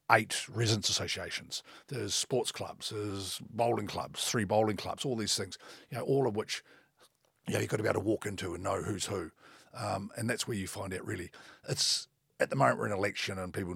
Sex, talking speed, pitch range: male, 225 wpm, 95-130 Hz